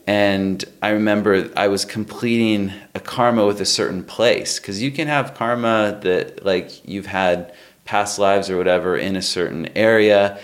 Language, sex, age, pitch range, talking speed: English, male, 30-49, 90-110 Hz, 165 wpm